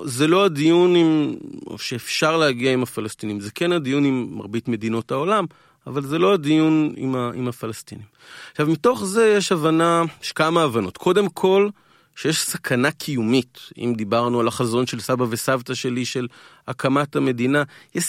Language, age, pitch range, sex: Hebrew, 30-49, 125-160 Hz, male